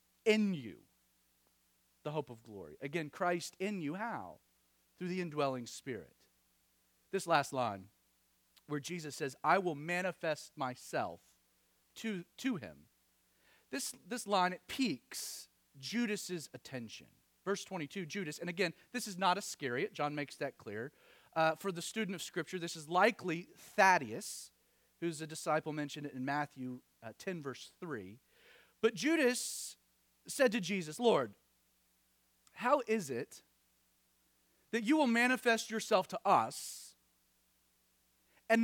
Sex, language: male, English